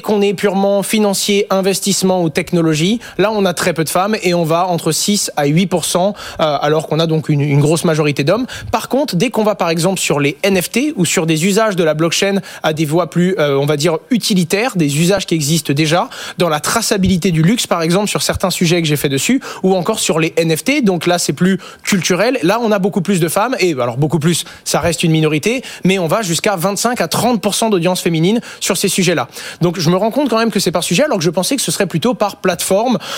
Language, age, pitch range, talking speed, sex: French, 20-39, 165-200 Hz, 240 wpm, male